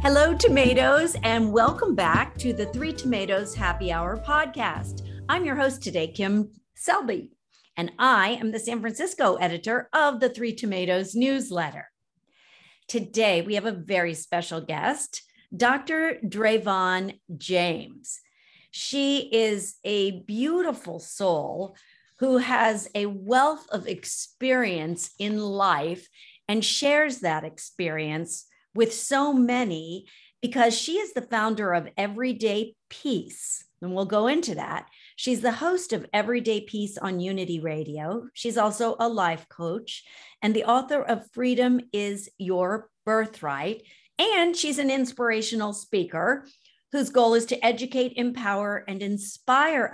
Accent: American